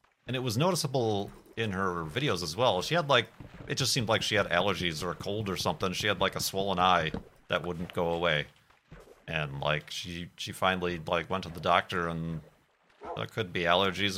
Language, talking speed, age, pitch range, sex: English, 205 wpm, 40-59, 90-115 Hz, male